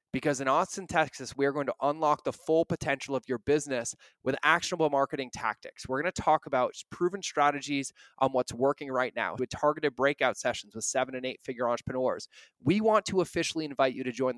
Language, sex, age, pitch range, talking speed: English, male, 20-39, 125-155 Hz, 205 wpm